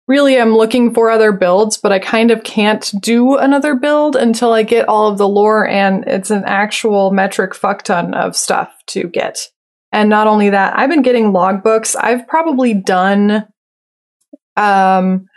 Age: 20-39